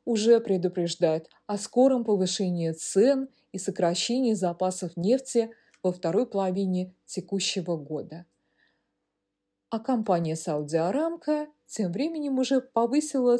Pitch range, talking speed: 175-245 Hz, 100 wpm